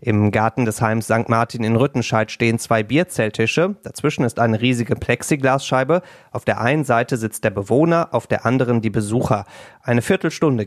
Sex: male